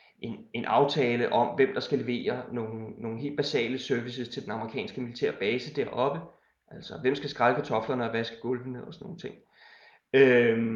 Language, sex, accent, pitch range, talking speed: Danish, male, native, 125-155 Hz, 175 wpm